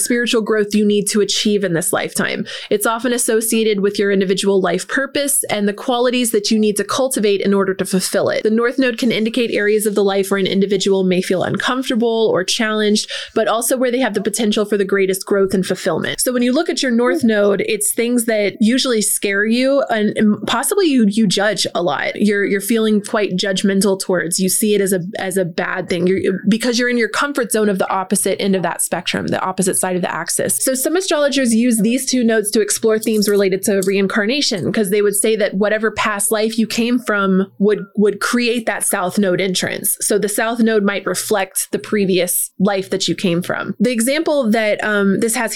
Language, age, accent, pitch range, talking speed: English, 20-39, American, 195-230 Hz, 220 wpm